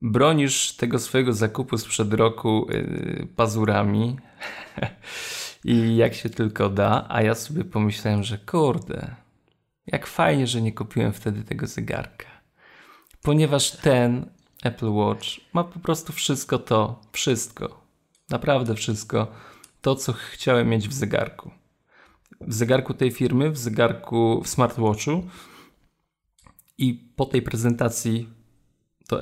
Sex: male